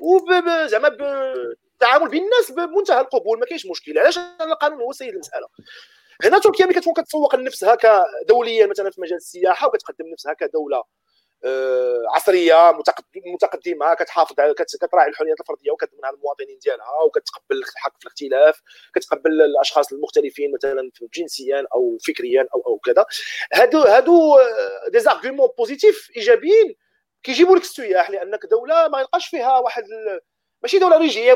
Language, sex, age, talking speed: Arabic, male, 40-59, 135 wpm